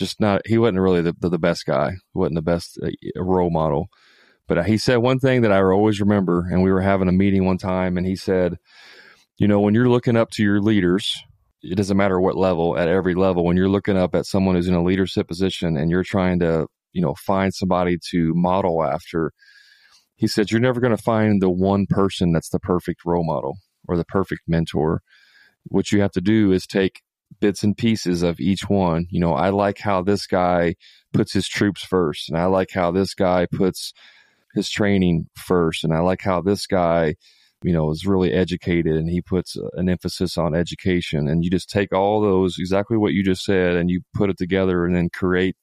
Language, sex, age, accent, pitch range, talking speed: English, male, 30-49, American, 85-100 Hz, 215 wpm